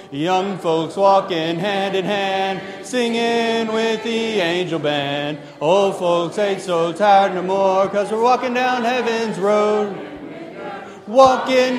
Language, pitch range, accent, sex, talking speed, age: English, 190-235 Hz, American, male, 125 wpm, 30-49